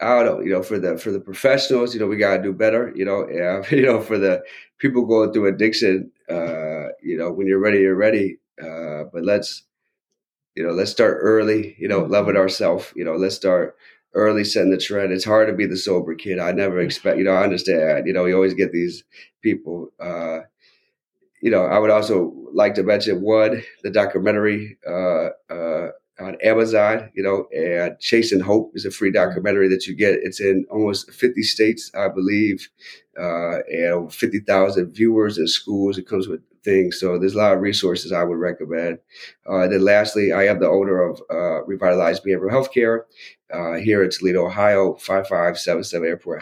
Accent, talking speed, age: American, 200 wpm, 30-49